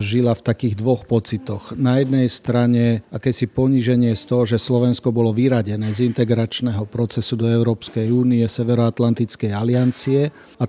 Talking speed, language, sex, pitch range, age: 140 wpm, Slovak, male, 115-130 Hz, 40-59